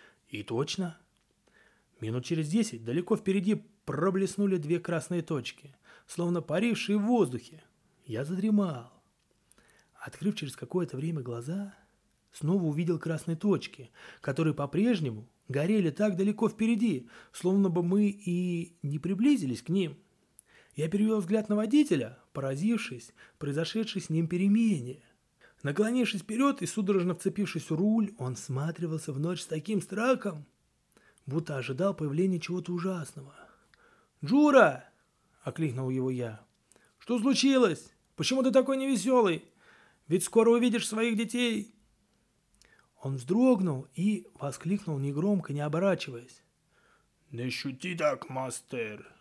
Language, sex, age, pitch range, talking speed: Russian, male, 30-49, 145-205 Hz, 115 wpm